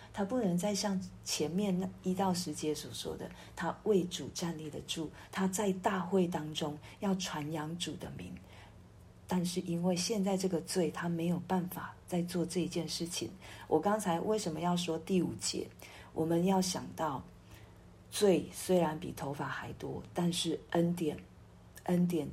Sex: female